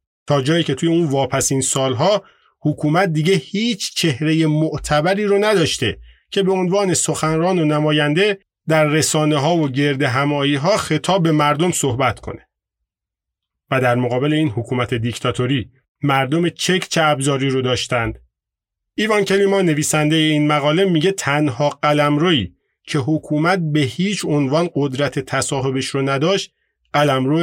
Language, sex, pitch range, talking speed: Persian, male, 130-160 Hz, 140 wpm